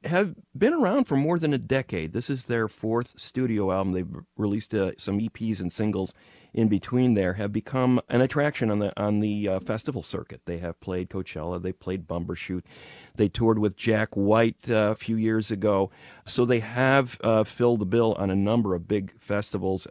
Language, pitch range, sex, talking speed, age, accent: English, 95-115 Hz, male, 195 wpm, 40-59, American